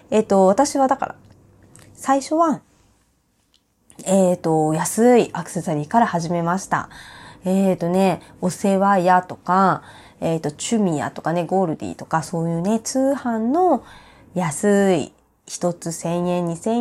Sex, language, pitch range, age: female, Japanese, 175-280 Hz, 20-39